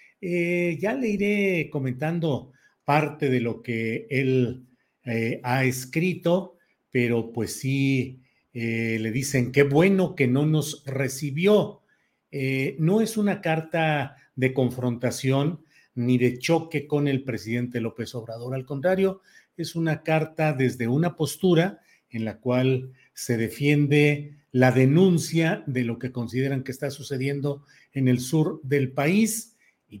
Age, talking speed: 50-69, 135 wpm